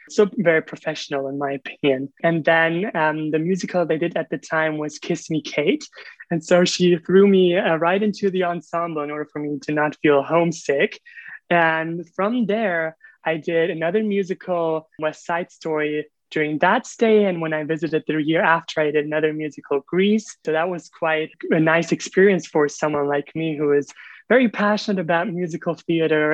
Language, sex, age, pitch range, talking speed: English, male, 20-39, 155-195 Hz, 185 wpm